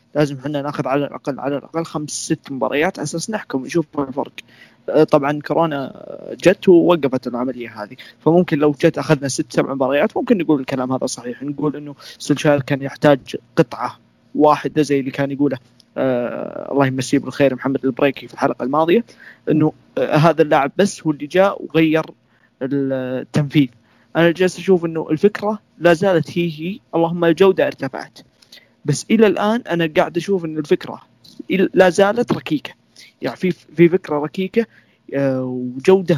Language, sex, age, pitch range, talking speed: Arabic, male, 20-39, 140-180 Hz, 150 wpm